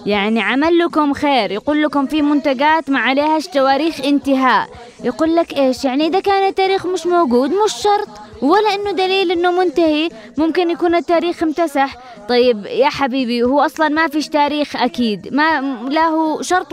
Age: 20-39